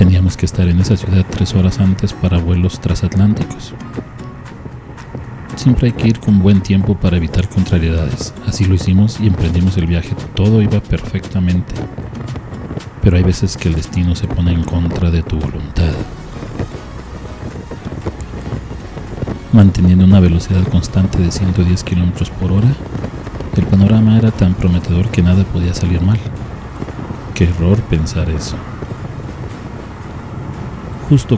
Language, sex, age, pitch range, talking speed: Spanish, male, 40-59, 90-105 Hz, 130 wpm